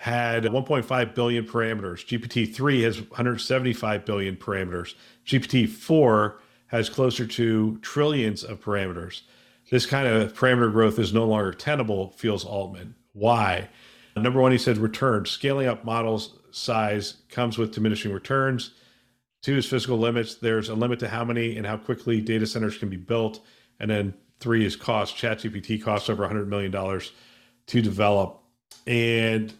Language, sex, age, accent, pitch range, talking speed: English, male, 50-69, American, 105-120 Hz, 150 wpm